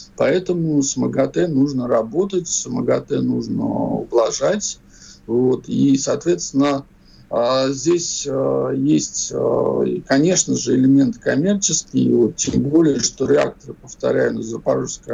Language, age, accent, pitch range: Russian, 50-69, native, 130-175 Hz